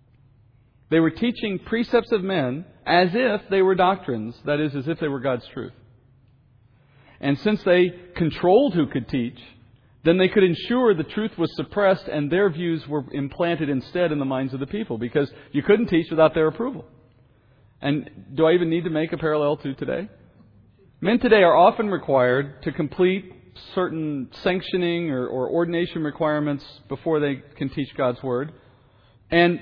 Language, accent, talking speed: English, American, 170 wpm